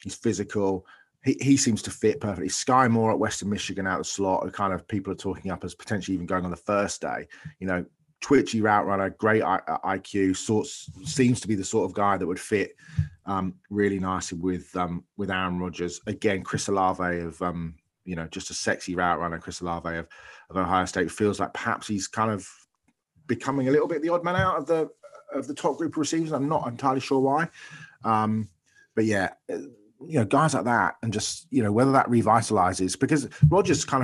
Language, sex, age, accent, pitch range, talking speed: English, male, 30-49, British, 90-115 Hz, 210 wpm